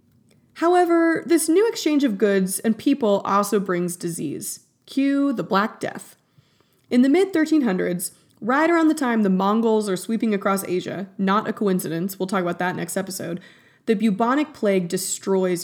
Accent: American